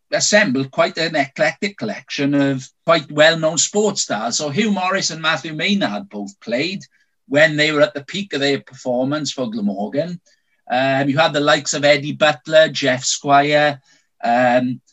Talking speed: 165 wpm